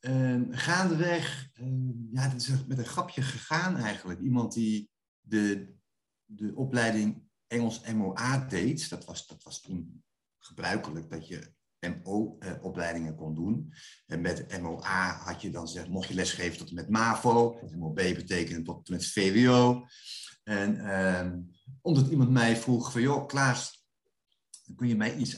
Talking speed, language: 155 wpm, Dutch